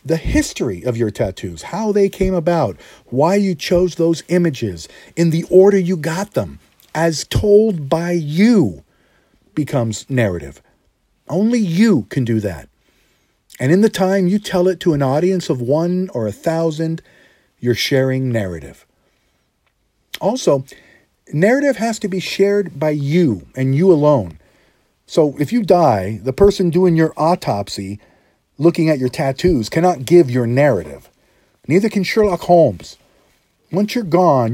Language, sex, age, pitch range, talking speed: English, male, 50-69, 125-175 Hz, 145 wpm